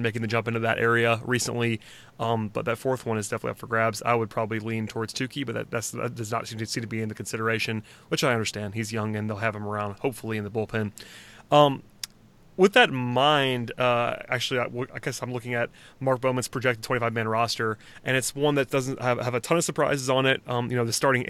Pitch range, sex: 115-130 Hz, male